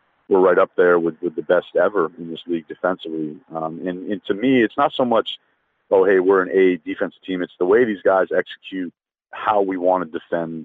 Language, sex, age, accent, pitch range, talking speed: English, male, 40-59, American, 80-100 Hz, 225 wpm